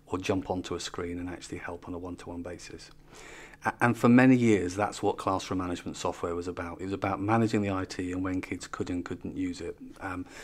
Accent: British